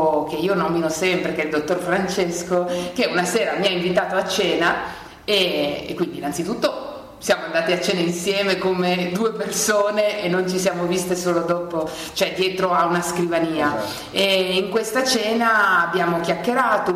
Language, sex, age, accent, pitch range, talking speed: Italian, female, 30-49, native, 170-205 Hz, 165 wpm